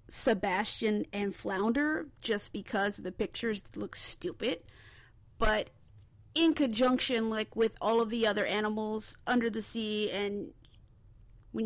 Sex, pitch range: female, 200-240 Hz